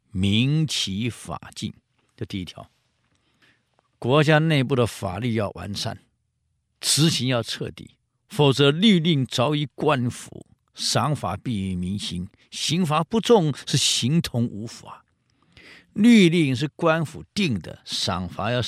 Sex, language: male, Chinese